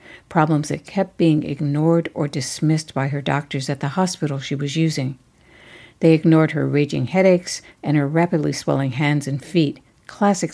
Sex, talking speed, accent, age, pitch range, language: female, 165 wpm, American, 60-79, 145-180 Hz, English